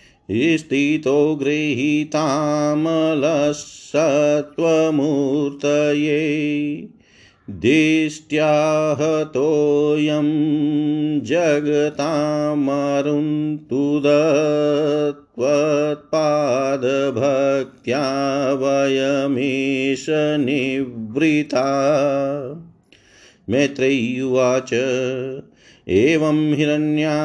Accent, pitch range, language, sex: native, 135-150 Hz, Hindi, male